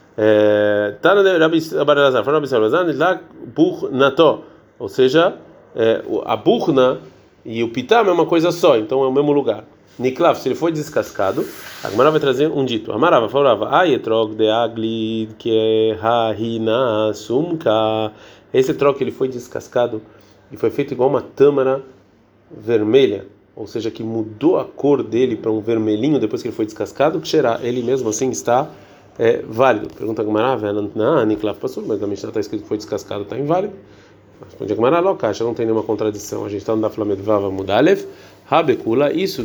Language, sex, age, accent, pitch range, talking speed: Portuguese, male, 30-49, Brazilian, 110-155 Hz, 150 wpm